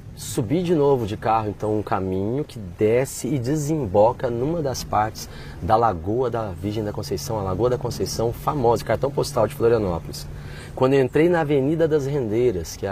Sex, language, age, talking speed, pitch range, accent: male, Portuguese, 30-49, 180 wpm, 105-165 Hz, Brazilian